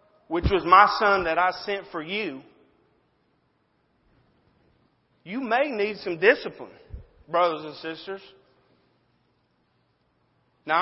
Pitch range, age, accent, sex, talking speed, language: 150-200 Hz, 40-59, American, male, 100 wpm, English